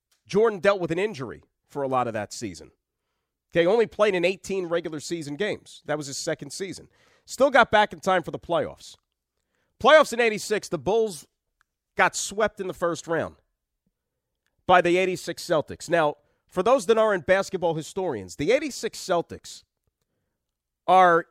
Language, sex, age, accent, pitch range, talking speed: English, male, 40-59, American, 150-210 Hz, 165 wpm